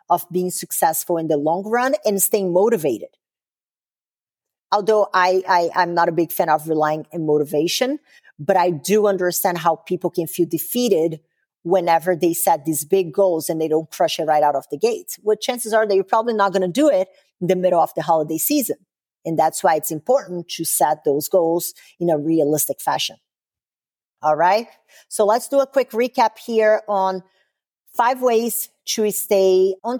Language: English